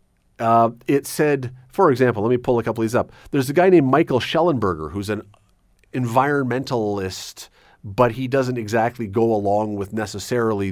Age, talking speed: 40-59, 170 wpm